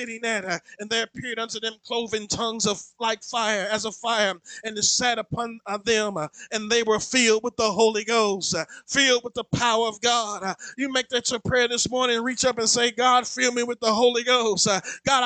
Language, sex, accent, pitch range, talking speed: English, male, American, 185-235 Hz, 205 wpm